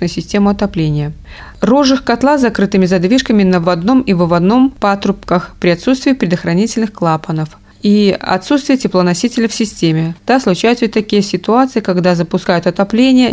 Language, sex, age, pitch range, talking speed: Russian, female, 20-39, 175-220 Hz, 135 wpm